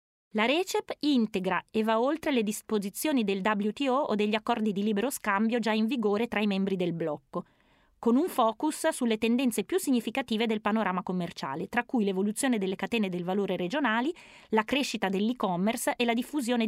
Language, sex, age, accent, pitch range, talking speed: Italian, female, 20-39, native, 210-270 Hz, 175 wpm